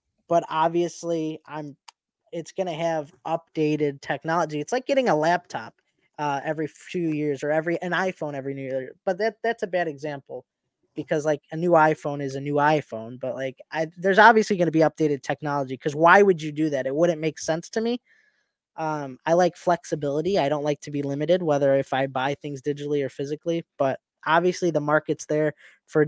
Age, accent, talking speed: 20-39, American, 195 wpm